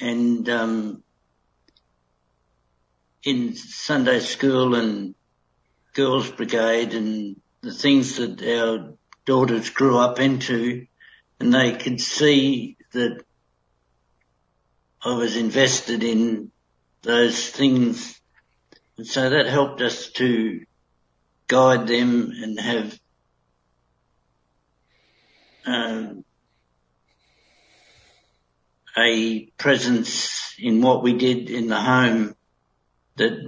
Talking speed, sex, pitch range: 90 wpm, male, 95-125 Hz